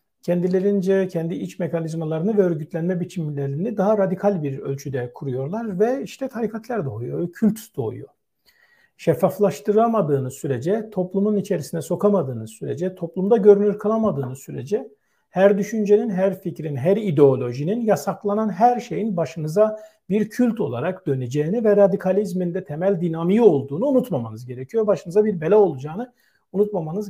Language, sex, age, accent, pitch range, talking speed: Turkish, male, 50-69, native, 170-210 Hz, 120 wpm